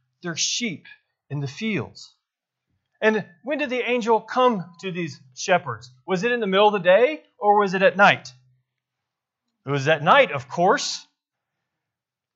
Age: 30-49